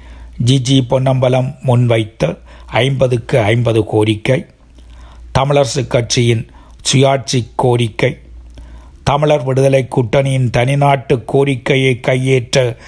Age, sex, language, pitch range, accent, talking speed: 60-79, male, Tamil, 110-140 Hz, native, 75 wpm